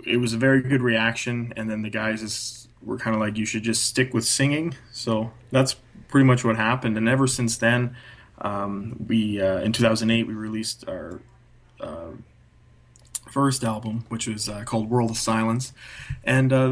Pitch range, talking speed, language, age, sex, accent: 110-120 Hz, 185 wpm, English, 20-39, male, American